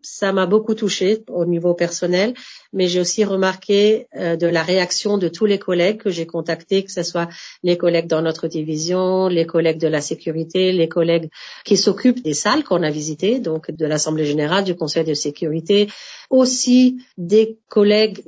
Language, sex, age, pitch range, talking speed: French, female, 40-59, 160-205 Hz, 180 wpm